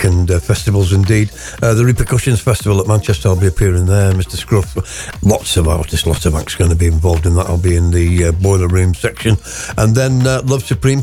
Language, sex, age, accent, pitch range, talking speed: English, male, 60-79, British, 85-105 Hz, 225 wpm